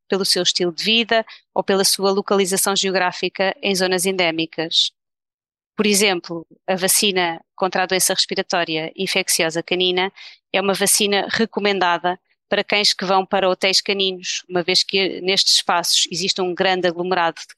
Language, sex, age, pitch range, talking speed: Portuguese, female, 20-39, 180-205 Hz, 150 wpm